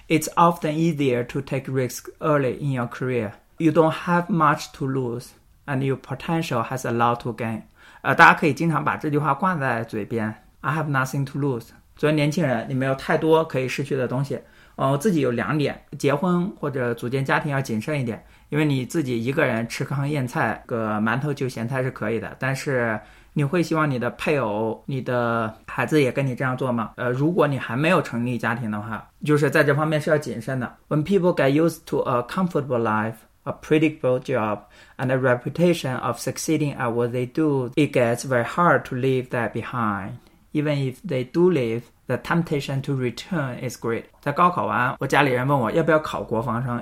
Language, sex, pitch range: Chinese, male, 120-150 Hz